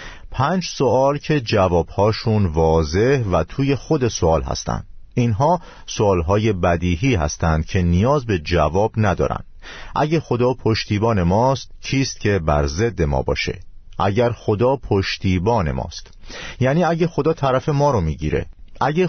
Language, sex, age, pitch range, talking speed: Persian, male, 50-69, 85-120 Hz, 130 wpm